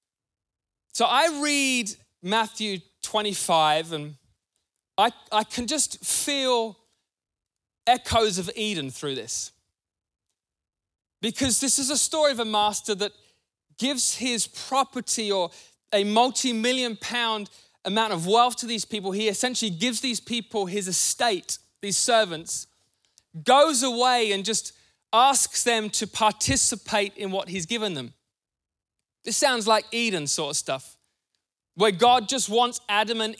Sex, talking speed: male, 130 wpm